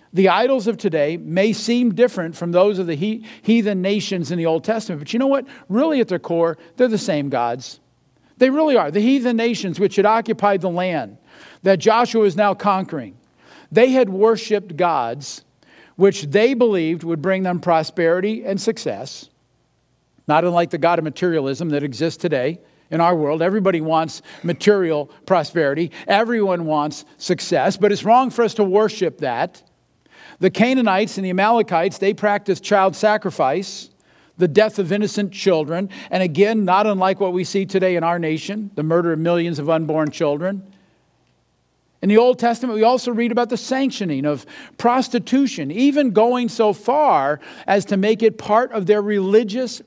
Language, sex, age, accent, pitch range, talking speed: English, male, 50-69, American, 170-230 Hz, 170 wpm